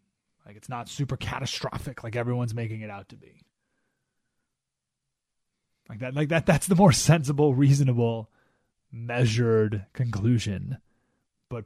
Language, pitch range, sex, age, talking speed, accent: English, 115-165 Hz, male, 30-49, 125 wpm, American